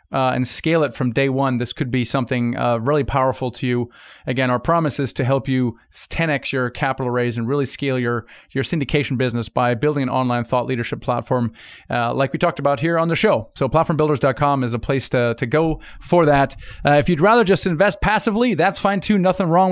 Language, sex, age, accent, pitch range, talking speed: English, male, 40-59, American, 125-150 Hz, 220 wpm